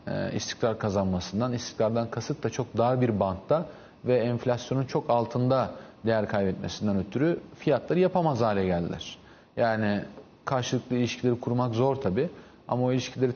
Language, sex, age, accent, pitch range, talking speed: Turkish, male, 40-59, native, 110-135 Hz, 135 wpm